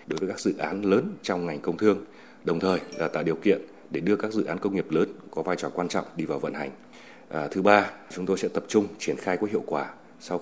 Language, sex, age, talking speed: Vietnamese, male, 30-49, 265 wpm